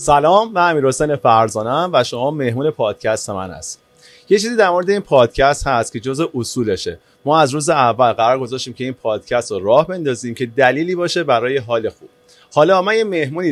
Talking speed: 185 wpm